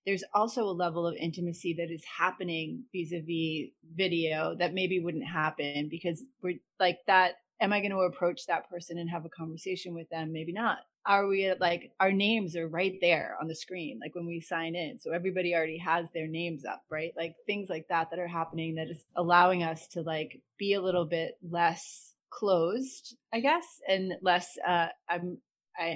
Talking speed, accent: 190 wpm, American